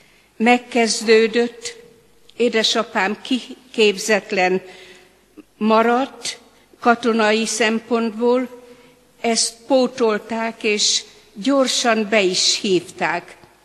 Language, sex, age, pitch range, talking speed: Hungarian, female, 50-69, 180-230 Hz, 55 wpm